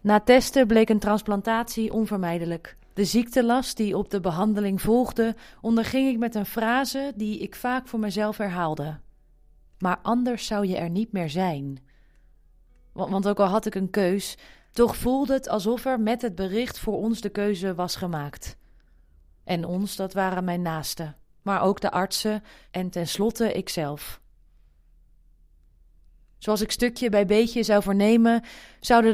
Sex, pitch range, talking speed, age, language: female, 170-225 Hz, 150 wpm, 30-49, Dutch